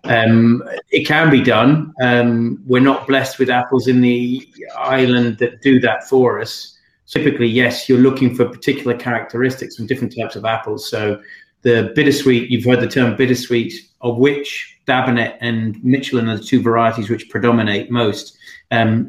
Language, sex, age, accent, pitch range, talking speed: English, male, 30-49, British, 115-130 Hz, 165 wpm